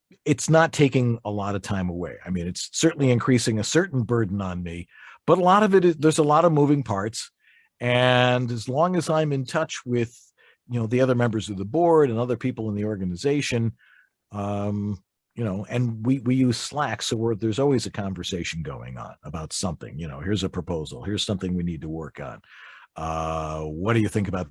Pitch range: 100-125 Hz